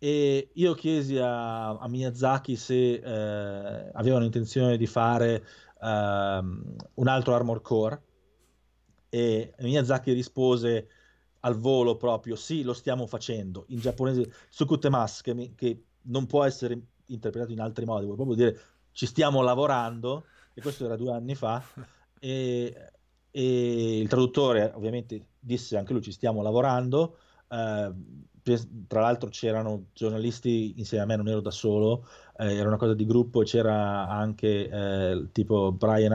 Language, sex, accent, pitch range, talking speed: Italian, male, native, 110-125 Hz, 140 wpm